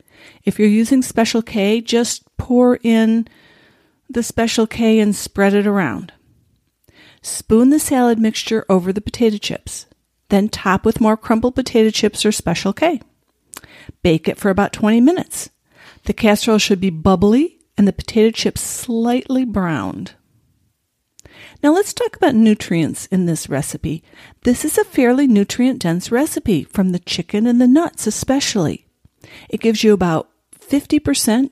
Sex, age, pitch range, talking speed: female, 50-69, 200-240 Hz, 145 wpm